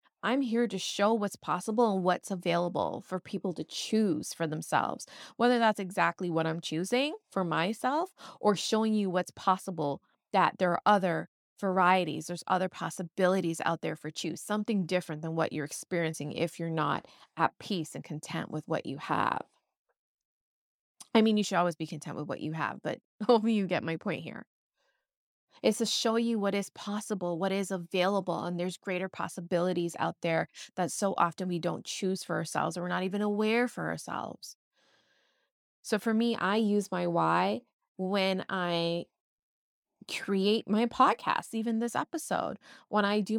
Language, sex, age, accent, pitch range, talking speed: English, female, 20-39, American, 170-220 Hz, 170 wpm